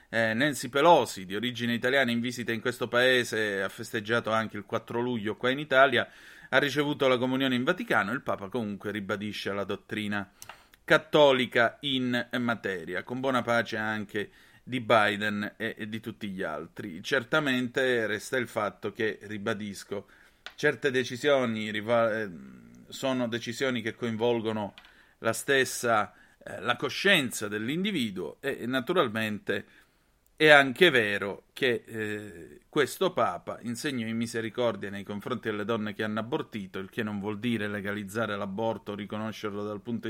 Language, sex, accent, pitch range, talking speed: Italian, male, native, 105-135 Hz, 150 wpm